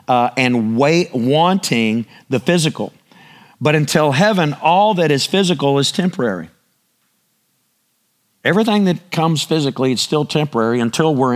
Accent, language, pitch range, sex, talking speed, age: American, English, 160-210 Hz, male, 125 wpm, 50-69